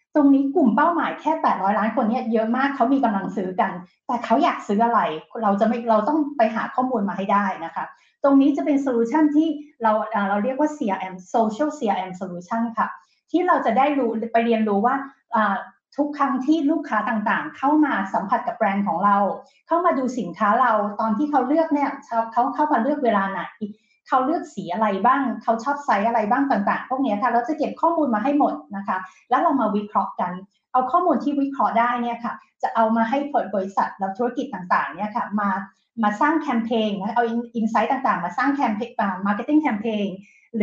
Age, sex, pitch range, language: 20-39, female, 210-275 Hz, Thai